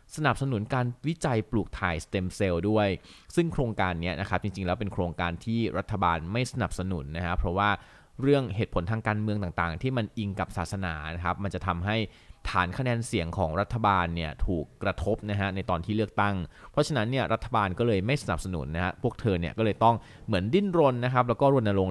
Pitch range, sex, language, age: 90-115 Hz, male, Thai, 20-39